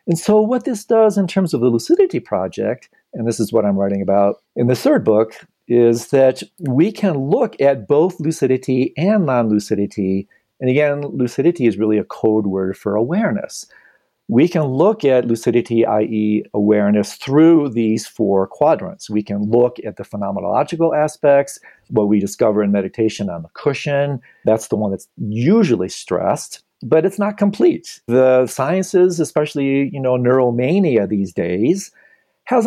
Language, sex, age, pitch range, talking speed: English, male, 50-69, 110-155 Hz, 155 wpm